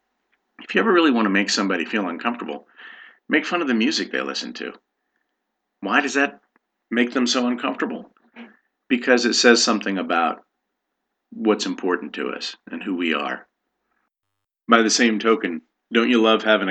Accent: American